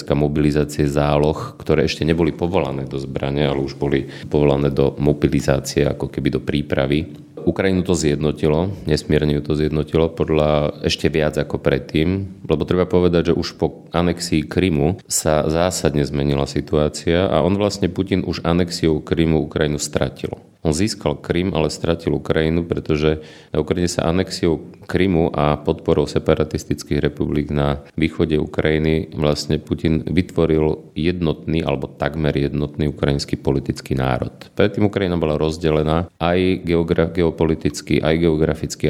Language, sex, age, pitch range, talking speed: Slovak, male, 40-59, 75-85 Hz, 135 wpm